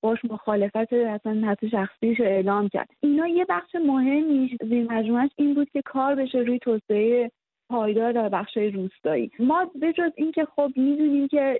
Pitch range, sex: 220-255 Hz, female